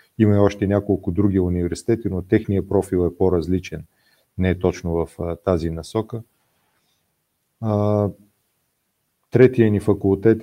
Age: 40-59